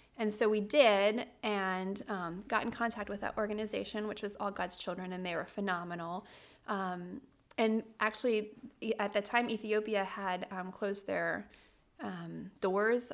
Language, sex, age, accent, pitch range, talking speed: English, female, 30-49, American, 185-215 Hz, 155 wpm